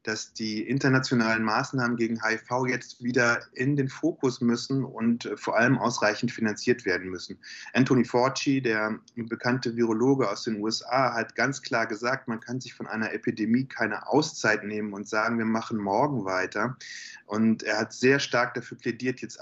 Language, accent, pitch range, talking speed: German, German, 110-130 Hz, 165 wpm